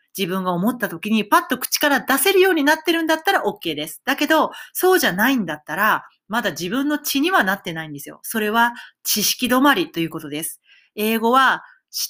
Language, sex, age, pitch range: Japanese, female, 40-59, 175-255 Hz